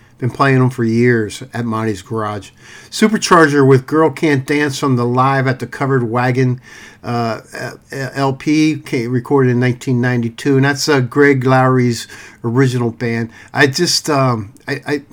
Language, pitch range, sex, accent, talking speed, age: English, 120-140 Hz, male, American, 145 wpm, 50-69